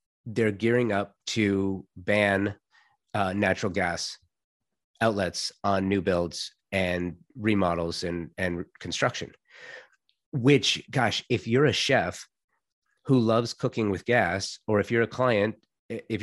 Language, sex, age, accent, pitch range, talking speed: English, male, 30-49, American, 100-120 Hz, 125 wpm